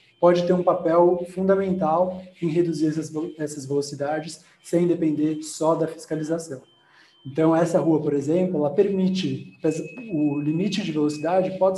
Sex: male